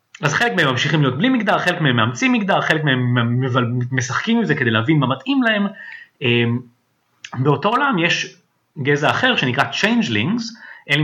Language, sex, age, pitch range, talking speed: Hebrew, male, 30-49, 130-205 Hz, 165 wpm